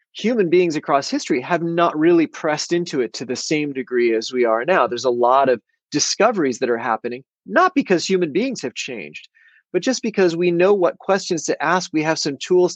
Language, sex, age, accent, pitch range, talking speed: English, male, 30-49, American, 135-210 Hz, 210 wpm